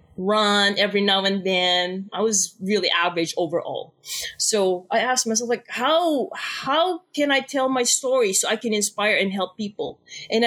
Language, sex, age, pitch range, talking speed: English, female, 20-39, 225-300 Hz, 170 wpm